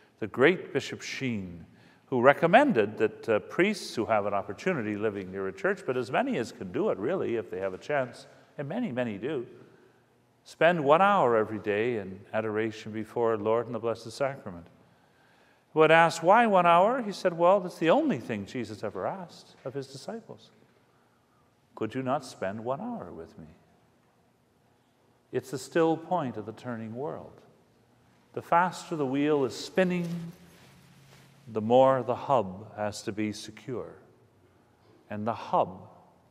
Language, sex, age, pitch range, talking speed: English, male, 50-69, 105-145 Hz, 165 wpm